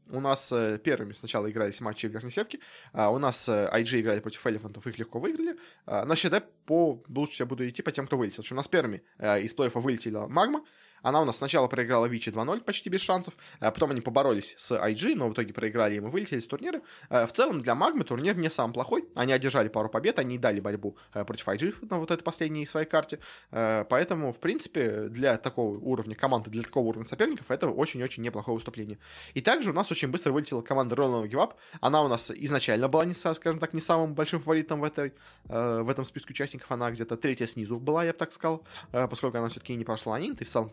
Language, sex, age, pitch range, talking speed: Russian, male, 20-39, 115-155 Hz, 225 wpm